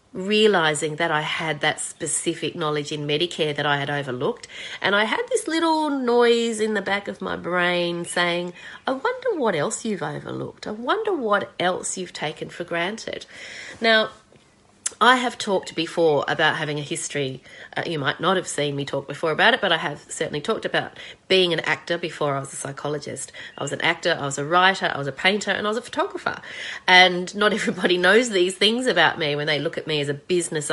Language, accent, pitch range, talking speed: English, Australian, 155-210 Hz, 210 wpm